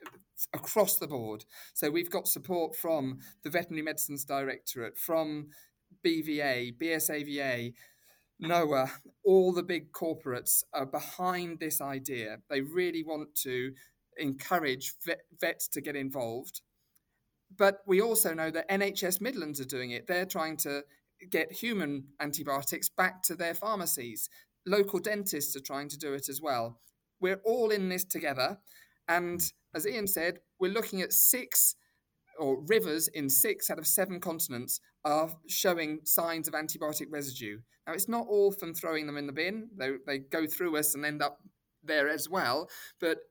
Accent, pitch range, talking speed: British, 140-180 Hz, 155 wpm